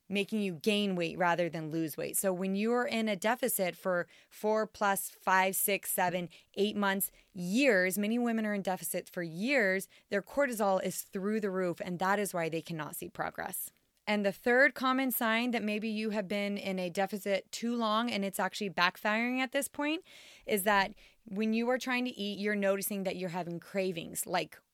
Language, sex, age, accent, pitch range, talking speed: English, female, 20-39, American, 185-215 Hz, 200 wpm